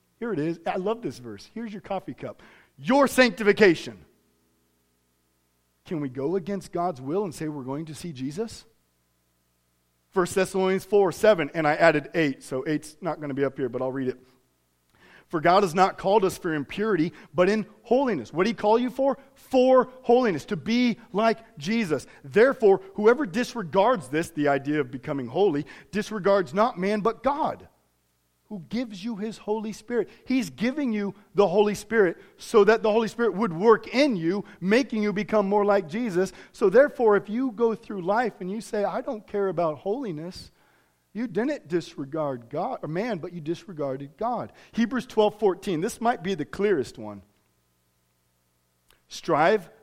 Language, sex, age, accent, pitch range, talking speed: English, male, 40-59, American, 140-220 Hz, 175 wpm